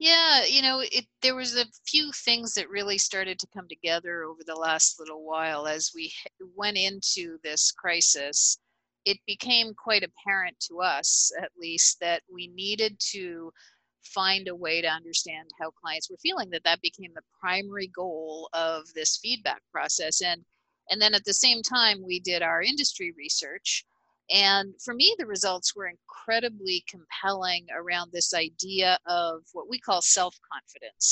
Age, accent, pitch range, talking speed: 50-69, American, 175-215 Hz, 165 wpm